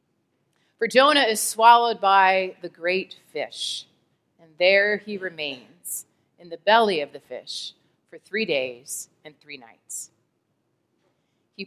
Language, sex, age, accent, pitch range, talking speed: English, female, 30-49, American, 170-245 Hz, 130 wpm